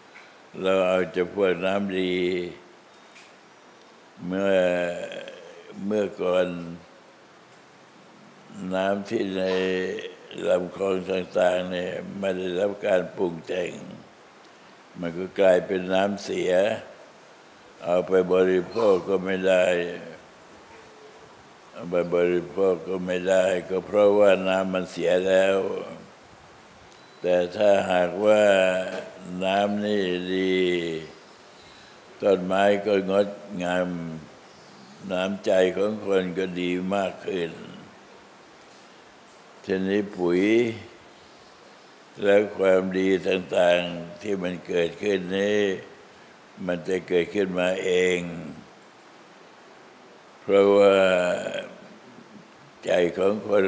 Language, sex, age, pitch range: Thai, male, 60-79, 90-100 Hz